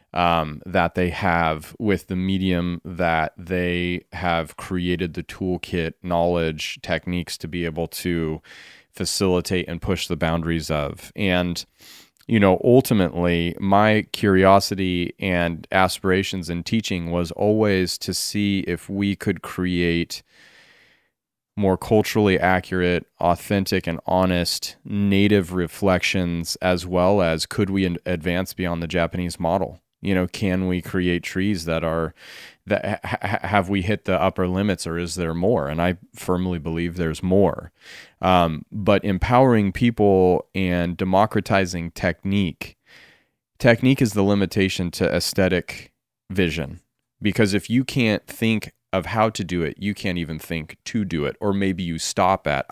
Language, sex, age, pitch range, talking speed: English, male, 30-49, 85-100 Hz, 140 wpm